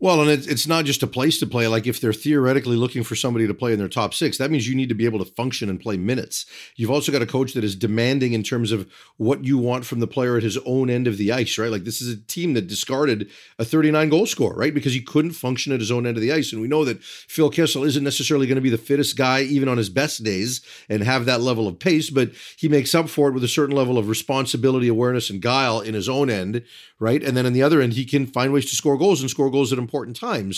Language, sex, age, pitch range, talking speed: English, male, 40-59, 115-140 Hz, 285 wpm